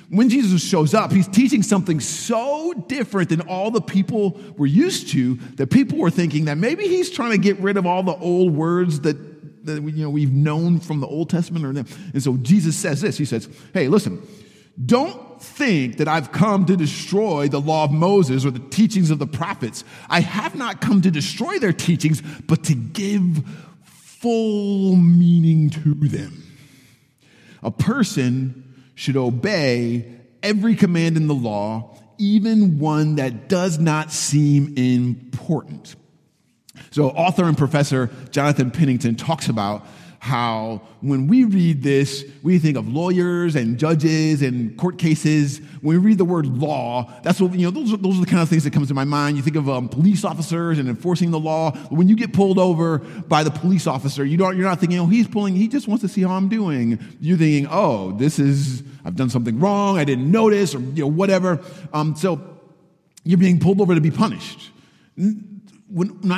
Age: 50-69